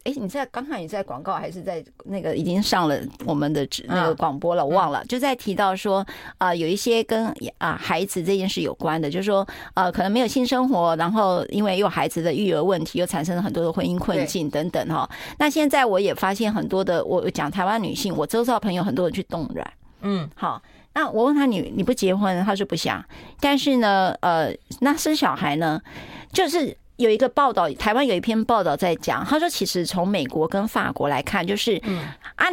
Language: Chinese